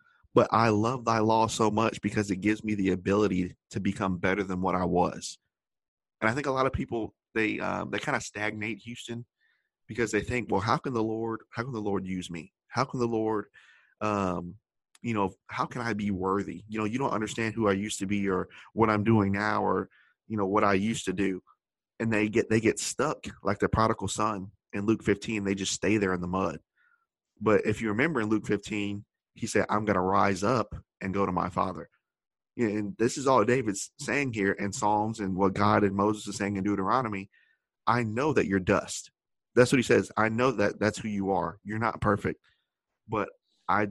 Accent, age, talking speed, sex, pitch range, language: American, 20-39, 220 wpm, male, 95-115 Hz, English